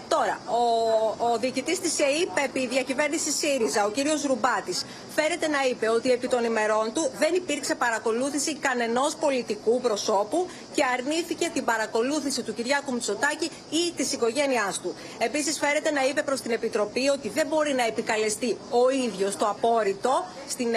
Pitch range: 225-285 Hz